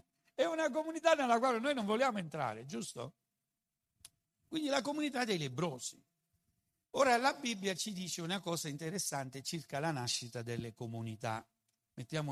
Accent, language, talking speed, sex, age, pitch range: native, Italian, 140 wpm, male, 60-79, 125-195 Hz